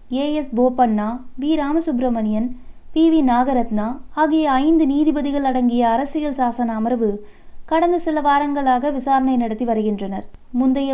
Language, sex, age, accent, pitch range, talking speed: Tamil, female, 20-39, native, 245-290 Hz, 120 wpm